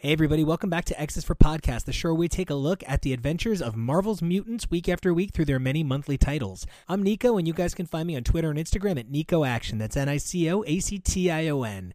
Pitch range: 135-180 Hz